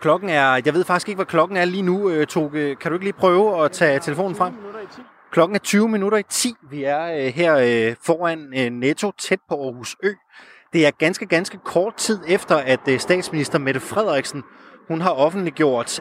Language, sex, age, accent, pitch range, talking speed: Danish, male, 20-39, native, 140-185 Hz, 185 wpm